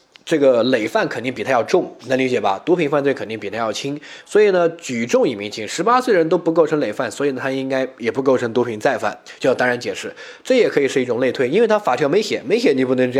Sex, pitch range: male, 130-185 Hz